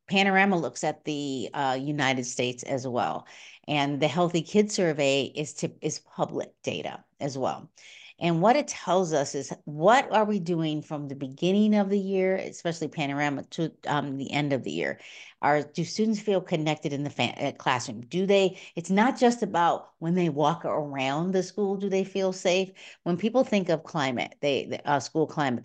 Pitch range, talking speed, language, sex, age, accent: 140-190 Hz, 185 wpm, English, female, 50-69, American